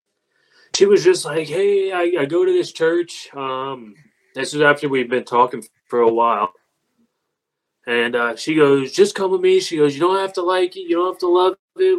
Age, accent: 20-39, American